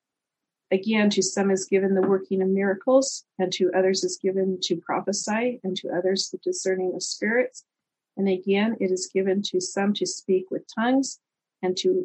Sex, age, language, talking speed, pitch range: female, 40-59, English, 180 wpm, 185-230 Hz